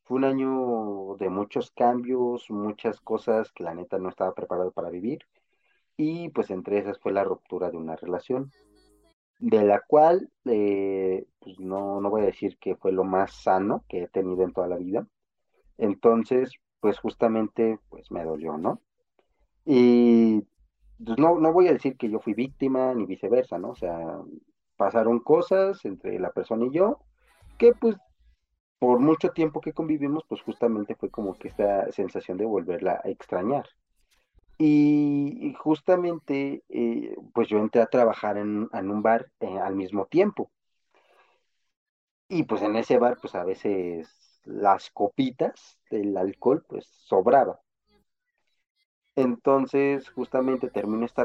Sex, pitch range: male, 100-140 Hz